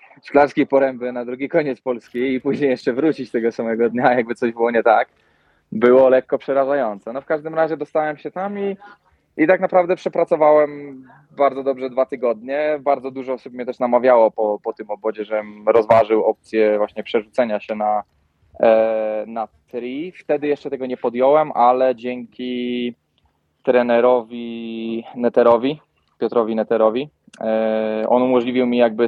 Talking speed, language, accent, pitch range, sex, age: 145 wpm, Polish, native, 110-135 Hz, male, 20-39